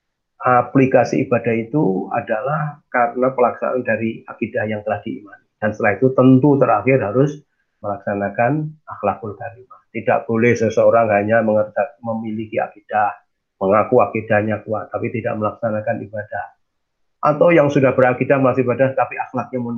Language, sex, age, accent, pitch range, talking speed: Indonesian, male, 30-49, native, 110-135 Hz, 130 wpm